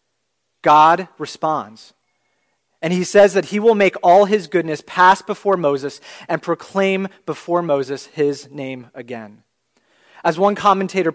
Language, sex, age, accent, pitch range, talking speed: English, male, 30-49, American, 140-180 Hz, 135 wpm